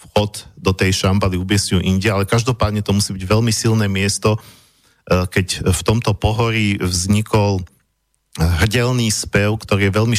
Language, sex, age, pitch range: Slovak, male, 50-69, 95-115 Hz